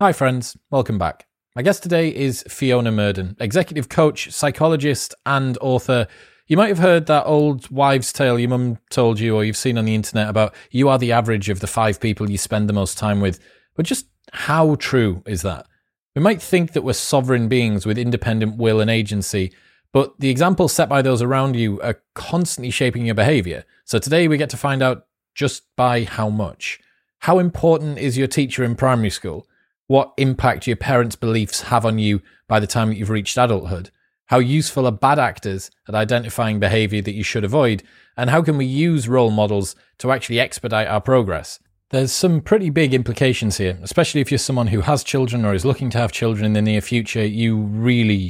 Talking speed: 200 wpm